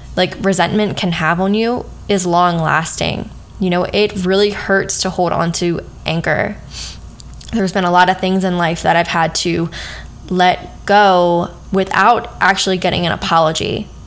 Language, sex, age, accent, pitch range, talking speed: English, female, 10-29, American, 175-200 Hz, 160 wpm